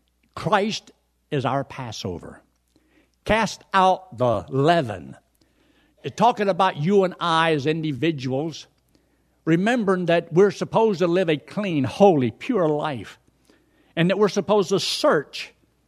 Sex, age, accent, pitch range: male, 60-79, American, 95-150 Hz